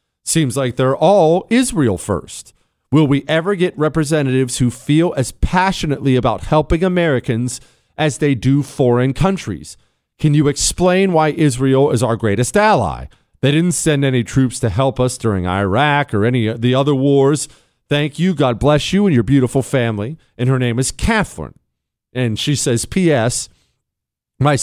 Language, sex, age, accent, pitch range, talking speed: English, male, 40-59, American, 125-175 Hz, 165 wpm